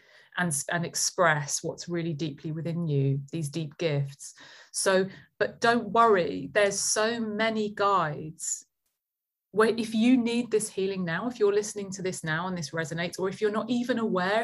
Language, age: English, 30-49